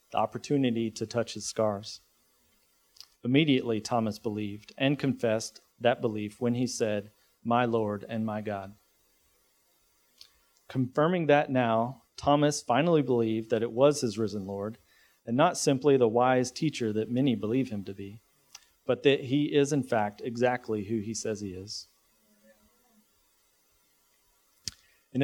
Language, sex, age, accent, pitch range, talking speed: English, male, 40-59, American, 110-130 Hz, 135 wpm